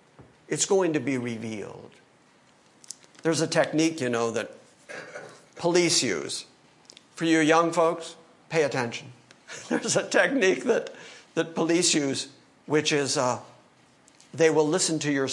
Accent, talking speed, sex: American, 135 wpm, male